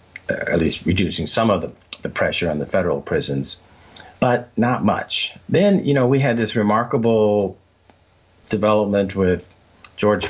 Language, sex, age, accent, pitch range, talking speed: English, male, 50-69, American, 85-105 Hz, 145 wpm